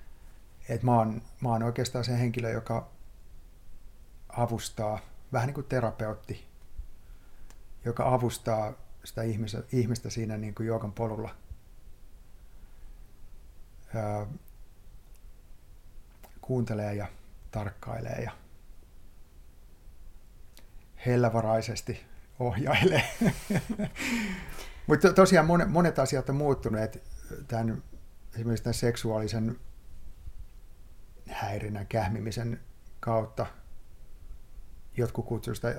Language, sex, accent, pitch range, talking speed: Finnish, male, native, 95-120 Hz, 80 wpm